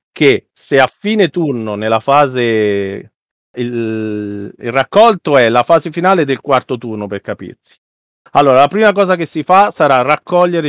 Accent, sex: native, male